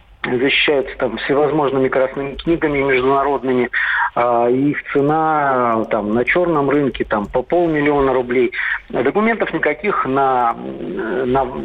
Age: 50-69